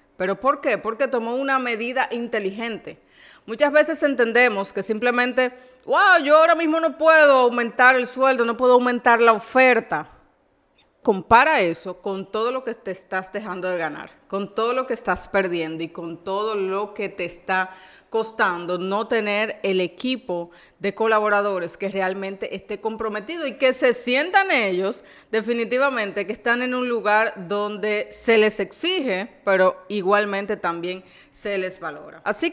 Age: 30-49